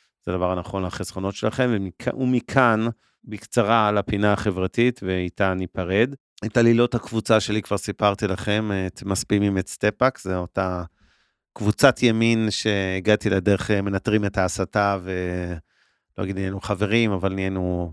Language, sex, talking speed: Hebrew, male, 135 wpm